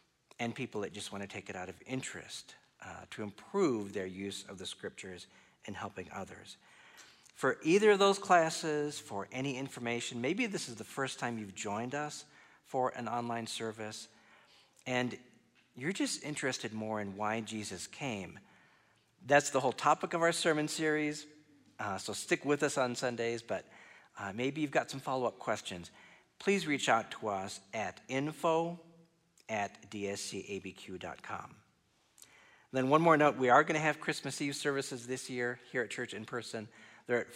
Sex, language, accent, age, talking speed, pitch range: male, English, American, 50-69, 170 wpm, 110-150 Hz